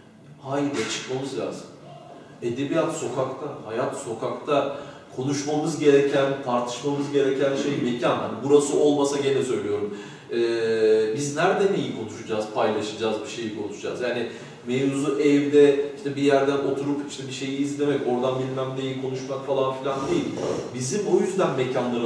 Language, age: Turkish, 40-59